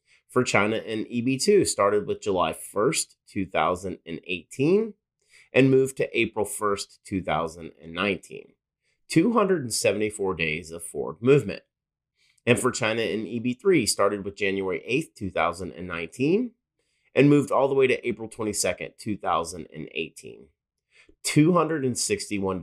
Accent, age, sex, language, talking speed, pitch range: American, 30-49, male, English, 105 wpm, 95-135 Hz